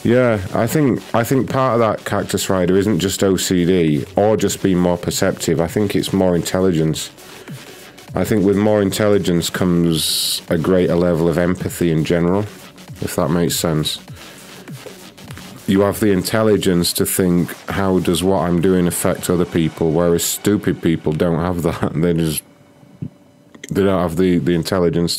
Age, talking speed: 40-59, 160 wpm